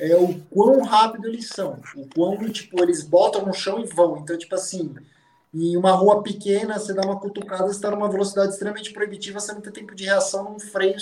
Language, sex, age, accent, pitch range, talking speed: Portuguese, male, 20-39, Brazilian, 170-215 Hz, 220 wpm